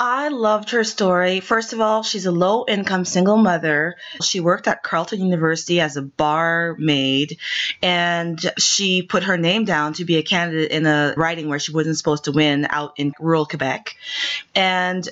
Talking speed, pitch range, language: 175 wpm, 160-195 Hz, English